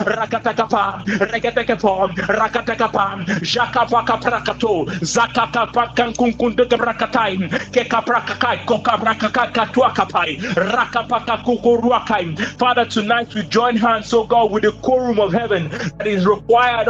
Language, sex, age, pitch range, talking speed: English, male, 30-49, 210-235 Hz, 125 wpm